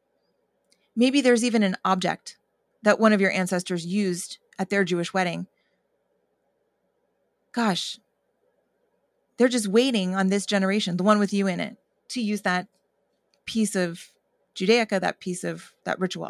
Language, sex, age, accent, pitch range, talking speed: English, female, 30-49, American, 185-235 Hz, 145 wpm